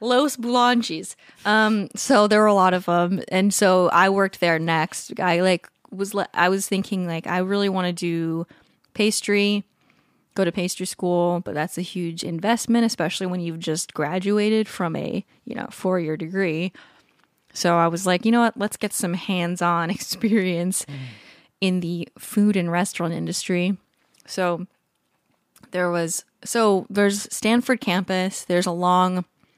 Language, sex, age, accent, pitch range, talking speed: English, female, 20-39, American, 170-205 Hz, 160 wpm